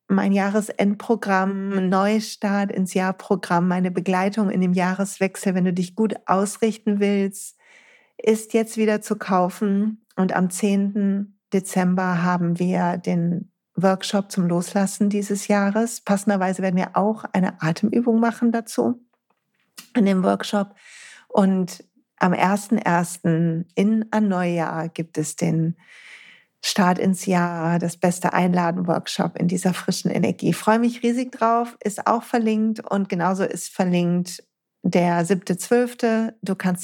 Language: German